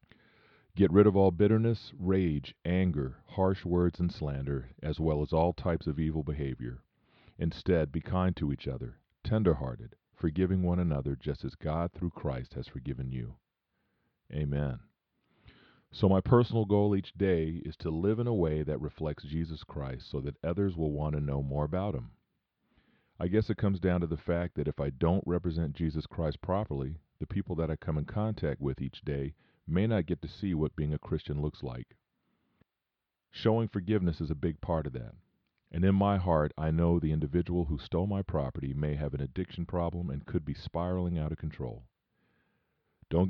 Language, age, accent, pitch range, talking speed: English, 40-59, American, 70-90 Hz, 185 wpm